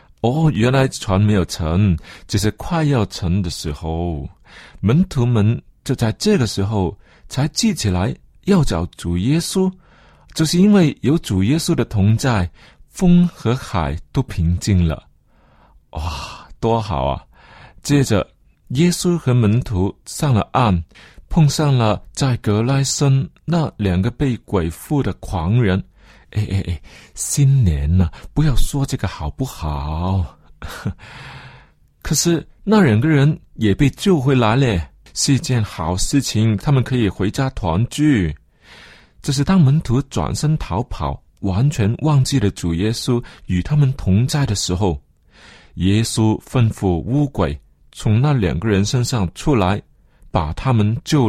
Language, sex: Chinese, male